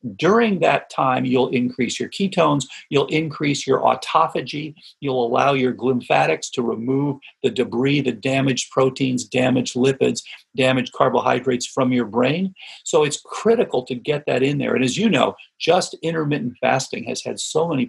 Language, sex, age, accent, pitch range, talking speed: English, male, 50-69, American, 125-150 Hz, 160 wpm